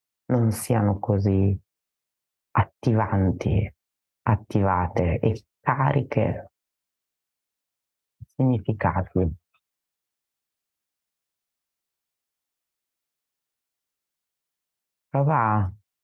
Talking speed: 35 wpm